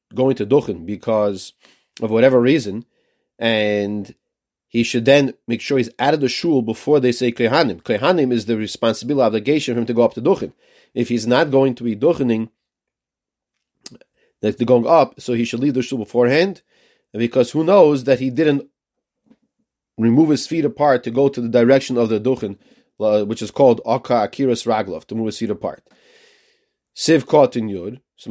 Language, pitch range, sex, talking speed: English, 115-145 Hz, male, 180 wpm